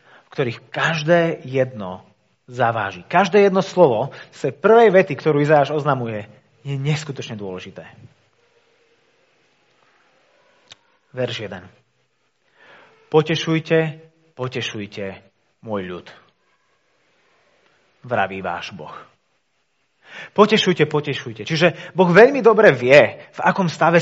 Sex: male